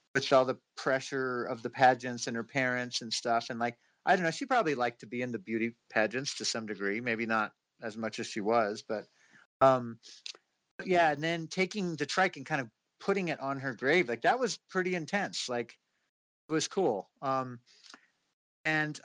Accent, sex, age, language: American, male, 50-69, English